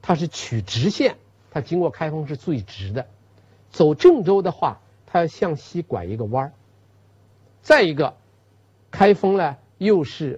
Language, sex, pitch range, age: Chinese, male, 100-165 Hz, 50-69